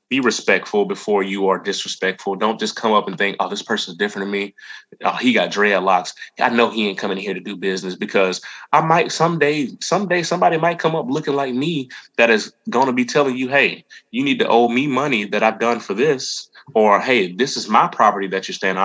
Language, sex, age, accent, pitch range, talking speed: English, male, 20-39, American, 105-140 Hz, 230 wpm